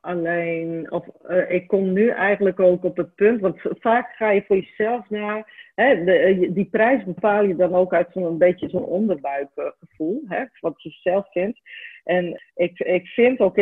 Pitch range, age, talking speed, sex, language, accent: 165-205 Hz, 40-59, 185 wpm, female, Dutch, Dutch